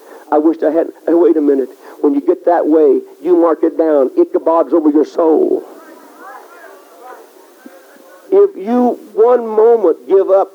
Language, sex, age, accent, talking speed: English, male, 60-79, American, 150 wpm